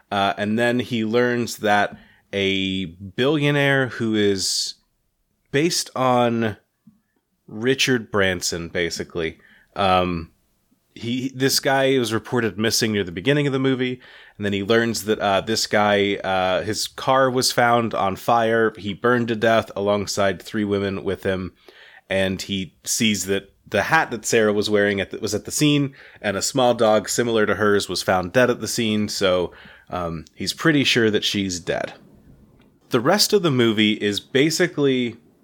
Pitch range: 100-125 Hz